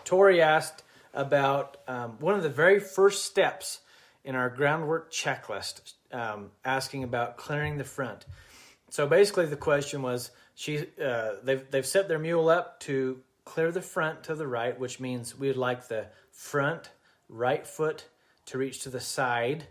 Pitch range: 125-155 Hz